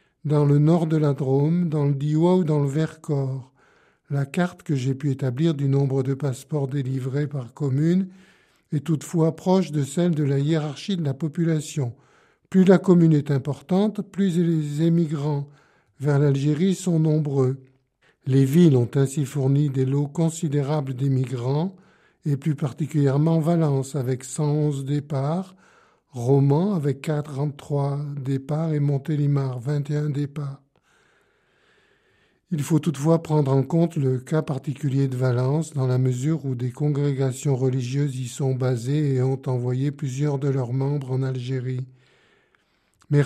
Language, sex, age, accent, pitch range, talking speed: French, male, 50-69, French, 135-160 Hz, 145 wpm